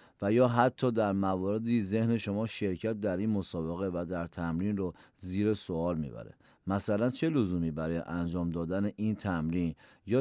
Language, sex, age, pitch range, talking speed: Persian, male, 40-59, 95-120 Hz, 160 wpm